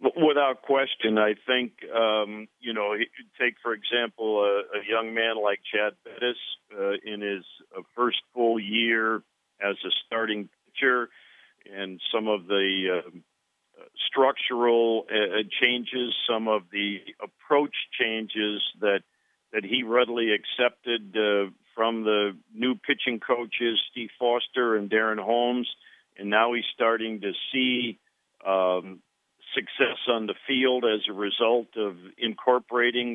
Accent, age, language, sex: American, 50-69, English, male